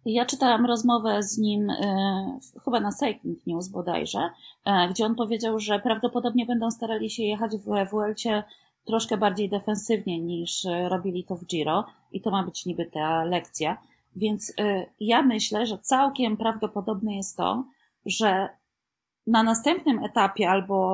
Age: 30-49